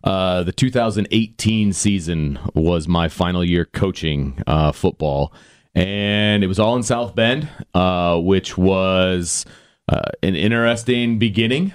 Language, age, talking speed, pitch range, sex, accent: English, 30-49, 130 wpm, 85-105 Hz, male, American